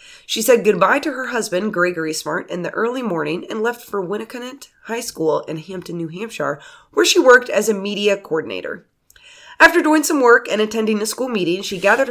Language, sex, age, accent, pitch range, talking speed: English, female, 30-49, American, 190-275 Hz, 200 wpm